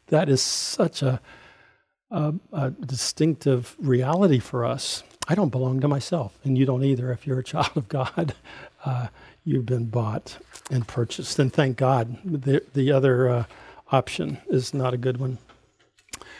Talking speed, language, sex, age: 160 wpm, English, male, 50-69